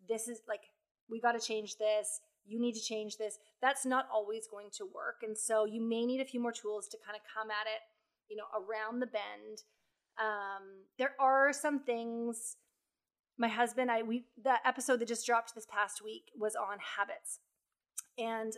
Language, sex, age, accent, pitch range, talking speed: English, female, 20-39, American, 215-265 Hz, 190 wpm